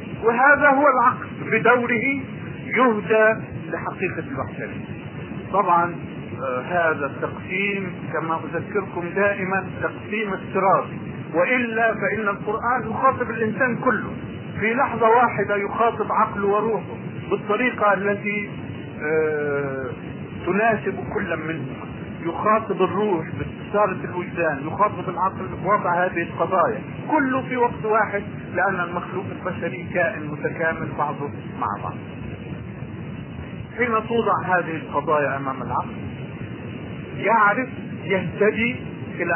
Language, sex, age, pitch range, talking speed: Arabic, male, 50-69, 160-215 Hz, 95 wpm